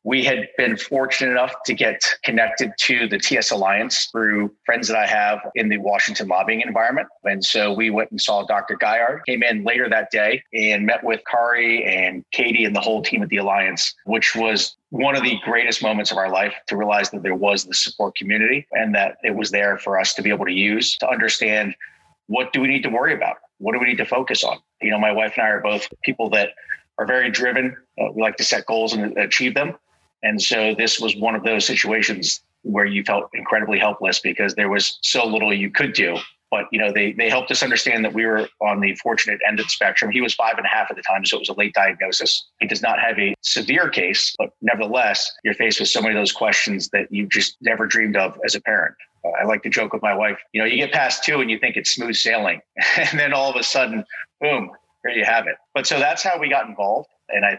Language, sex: English, male